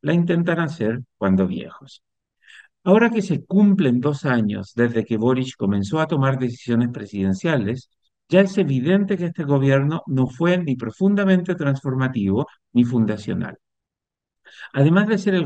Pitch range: 120-170 Hz